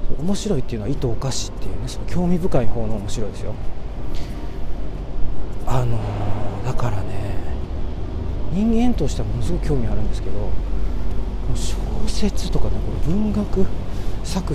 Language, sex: Japanese, male